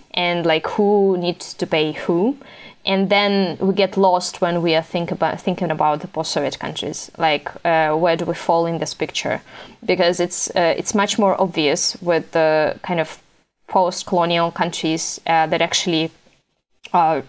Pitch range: 170-200 Hz